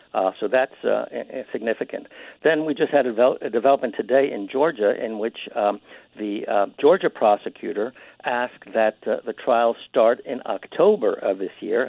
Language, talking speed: English, 170 wpm